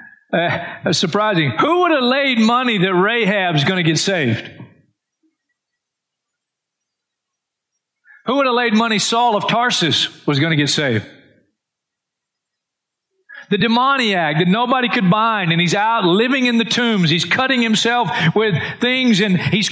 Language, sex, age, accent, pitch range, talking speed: English, male, 40-59, American, 160-240 Hz, 145 wpm